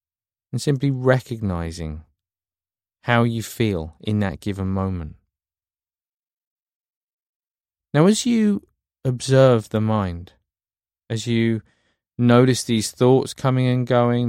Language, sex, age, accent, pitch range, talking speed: English, male, 20-39, British, 90-125 Hz, 100 wpm